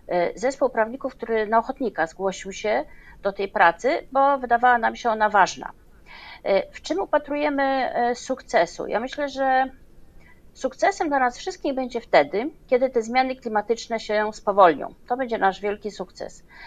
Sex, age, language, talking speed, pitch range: female, 40-59, Polish, 145 wpm, 220-280 Hz